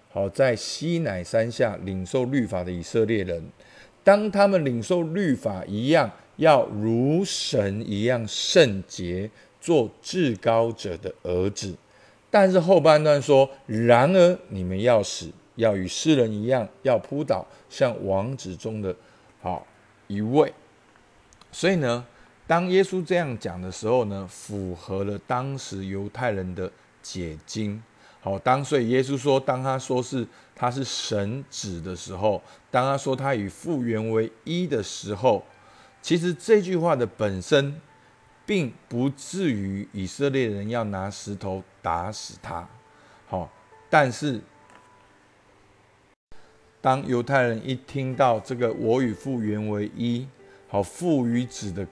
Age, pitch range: 50-69, 100-135 Hz